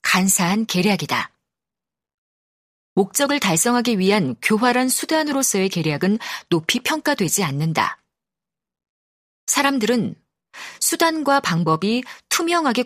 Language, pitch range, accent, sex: Korean, 185-255 Hz, native, female